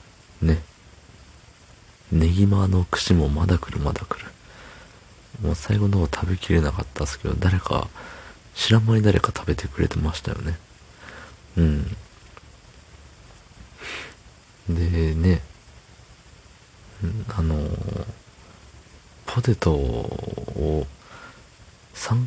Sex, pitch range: male, 75-100 Hz